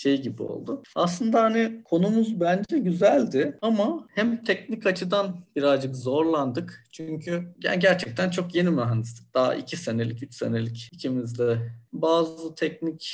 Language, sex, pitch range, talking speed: Turkish, male, 125-160 Hz, 130 wpm